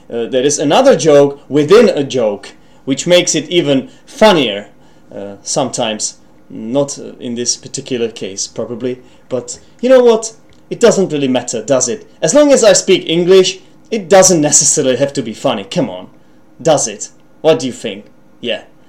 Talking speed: 170 wpm